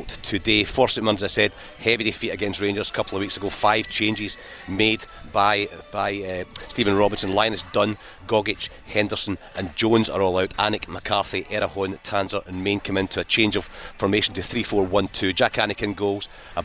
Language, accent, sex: English, British, male